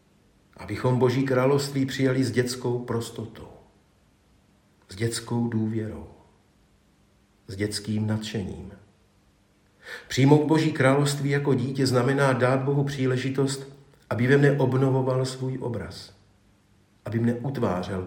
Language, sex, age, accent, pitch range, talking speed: Czech, male, 50-69, native, 100-125 Hz, 105 wpm